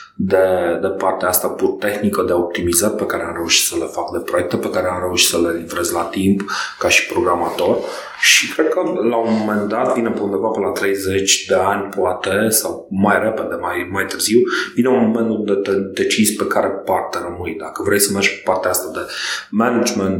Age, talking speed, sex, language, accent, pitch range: 30-49, 200 wpm, male, English, Romanian, 95-115 Hz